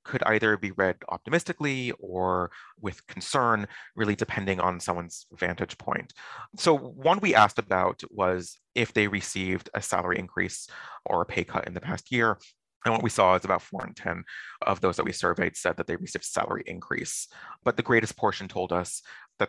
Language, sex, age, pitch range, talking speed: English, male, 30-49, 90-115 Hz, 190 wpm